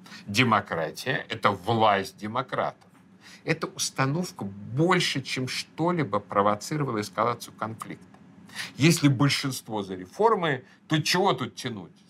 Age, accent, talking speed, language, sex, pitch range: 50-69, native, 105 wpm, Russian, male, 115-165 Hz